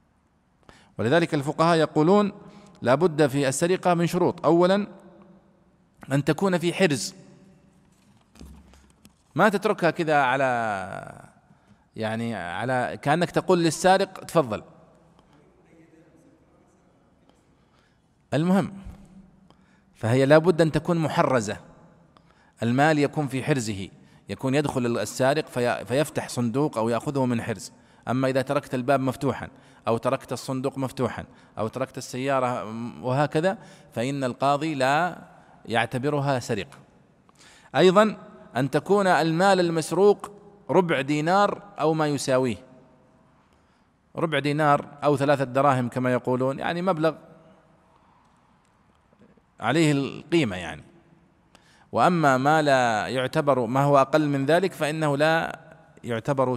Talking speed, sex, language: 100 wpm, male, Arabic